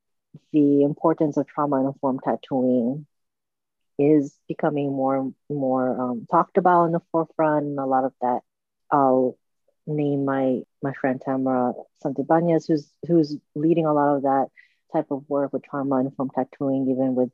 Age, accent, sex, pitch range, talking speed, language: 30-49, American, female, 135-160 Hz, 145 wpm, English